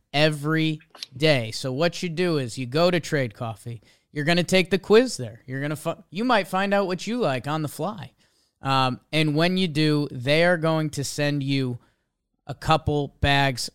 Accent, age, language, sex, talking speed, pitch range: American, 30-49, English, male, 200 wpm, 130-160 Hz